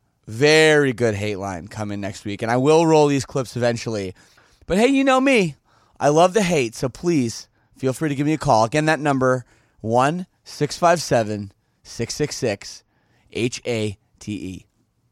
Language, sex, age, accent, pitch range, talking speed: English, male, 30-49, American, 115-160 Hz, 150 wpm